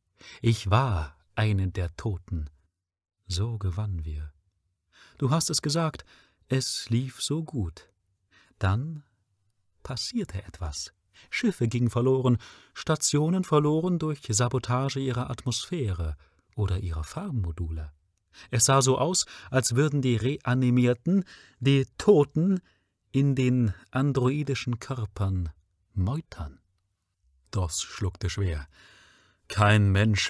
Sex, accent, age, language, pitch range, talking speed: male, German, 40-59, German, 95-125 Hz, 100 wpm